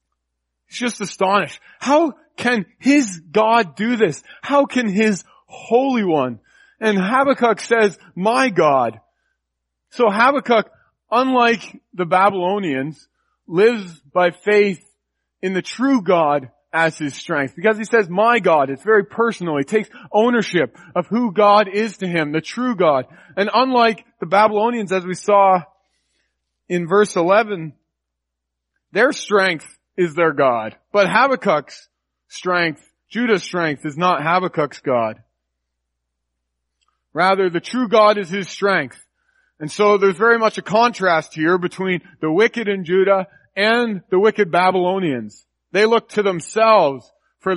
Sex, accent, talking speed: male, American, 135 wpm